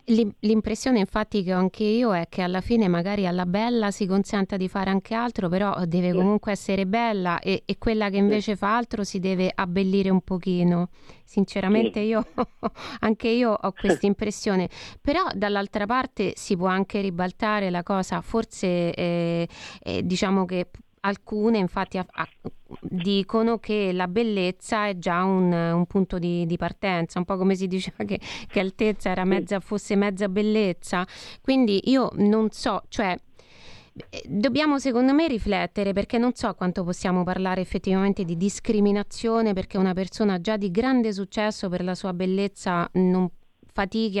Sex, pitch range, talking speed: female, 185-220 Hz, 160 wpm